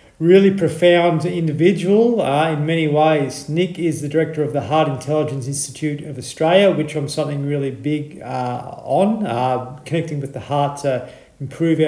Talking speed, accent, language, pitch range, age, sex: 160 wpm, Australian, English, 135-155 Hz, 40-59, male